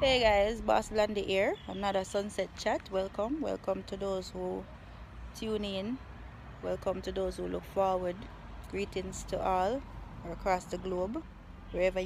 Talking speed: 140 wpm